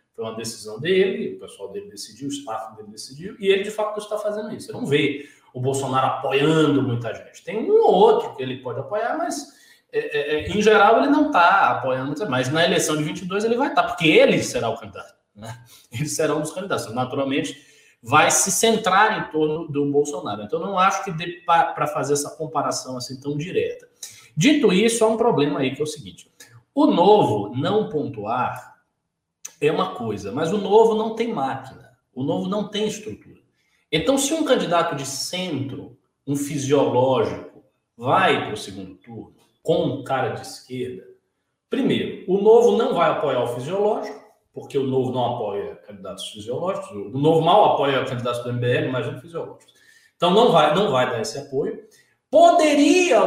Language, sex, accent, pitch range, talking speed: Portuguese, male, Brazilian, 135-215 Hz, 190 wpm